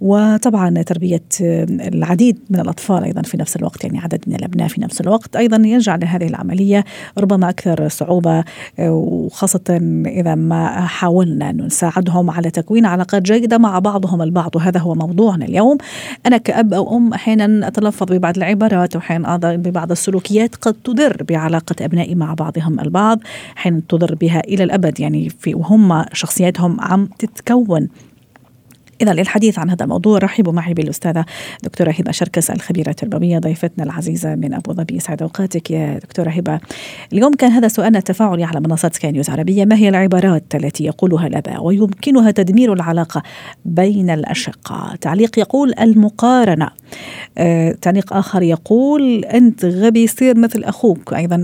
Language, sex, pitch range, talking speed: Arabic, female, 165-210 Hz, 145 wpm